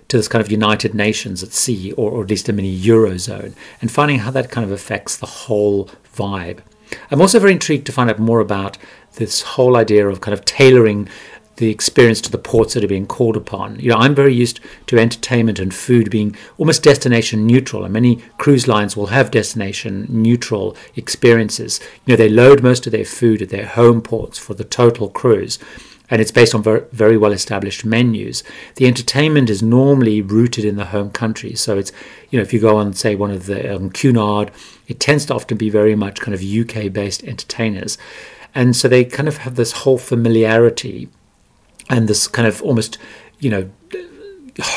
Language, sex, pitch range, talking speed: English, male, 105-125 Hz, 200 wpm